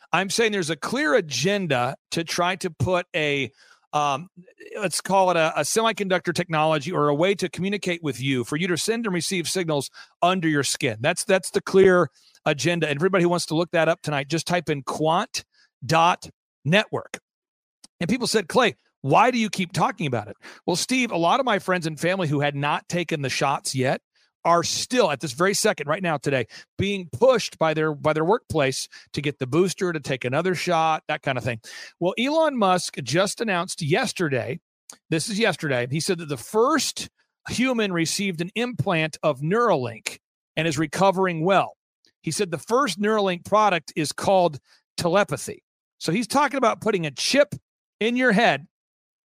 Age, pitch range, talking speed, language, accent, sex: 40-59, 155-200 Hz, 185 wpm, English, American, male